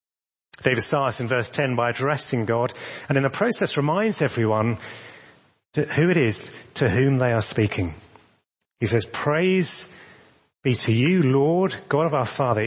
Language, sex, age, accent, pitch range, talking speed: English, male, 30-49, British, 105-145 Hz, 155 wpm